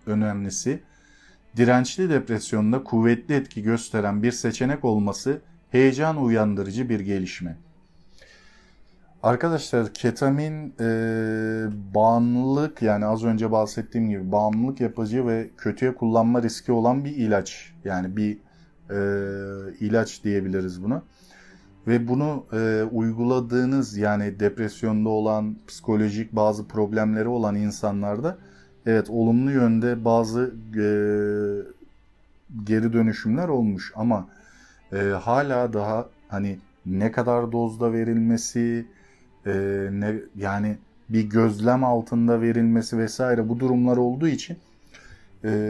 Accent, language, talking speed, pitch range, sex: native, Turkish, 105 wpm, 105-120 Hz, male